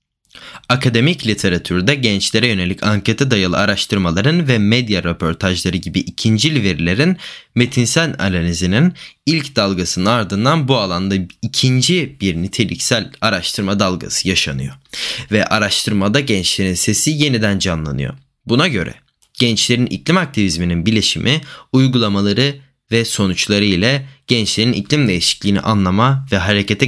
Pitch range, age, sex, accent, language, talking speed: 95-130 Hz, 20-39, male, native, Turkish, 105 wpm